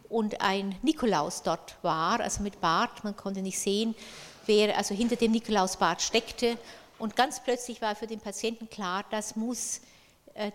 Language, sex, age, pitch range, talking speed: German, female, 50-69, 195-225 Hz, 165 wpm